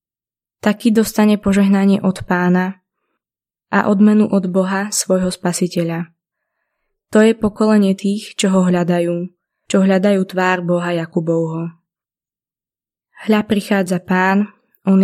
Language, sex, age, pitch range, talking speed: Slovak, female, 20-39, 180-210 Hz, 110 wpm